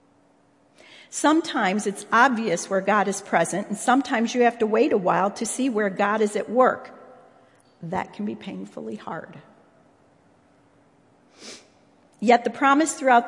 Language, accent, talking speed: English, American, 140 wpm